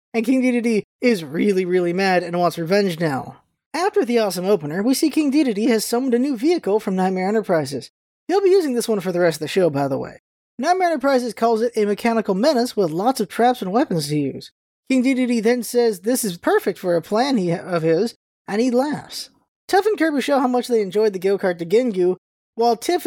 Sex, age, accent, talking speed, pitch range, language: male, 20-39, American, 225 wpm, 195-265 Hz, English